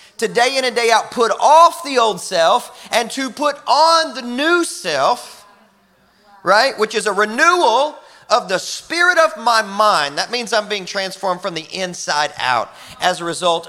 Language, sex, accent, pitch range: English, male, American, 175-235 Hz